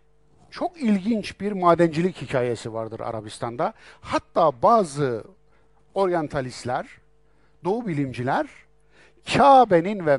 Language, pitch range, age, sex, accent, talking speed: Turkish, 135-210 Hz, 60-79, male, native, 80 wpm